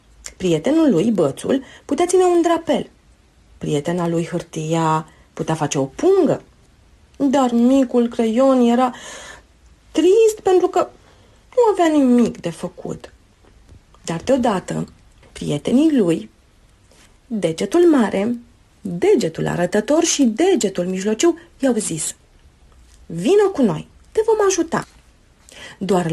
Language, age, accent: Romanian, 30-49, native